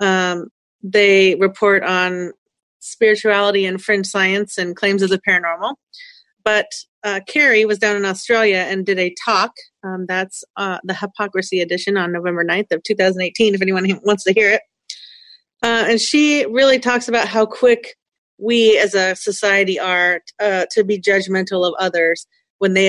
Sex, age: female, 30-49